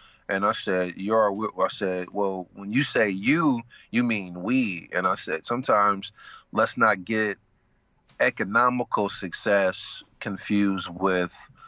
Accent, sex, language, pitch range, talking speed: American, male, English, 95-105 Hz, 130 wpm